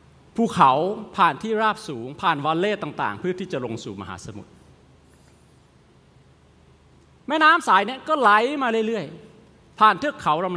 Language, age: Thai, 30-49